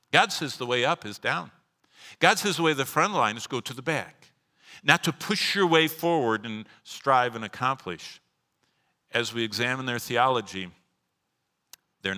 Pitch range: 110-165 Hz